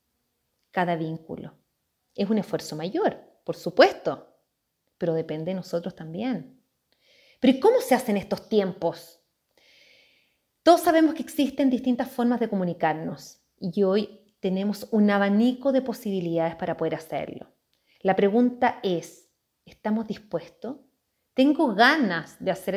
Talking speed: 125 wpm